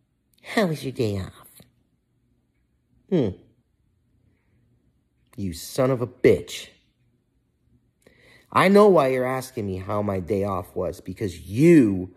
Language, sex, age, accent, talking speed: English, male, 30-49, American, 120 wpm